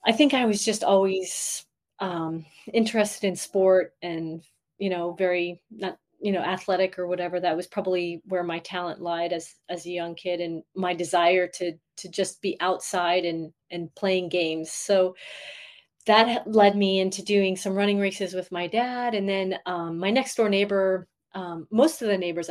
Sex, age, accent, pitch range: female, 30-49, American, 175-200 Hz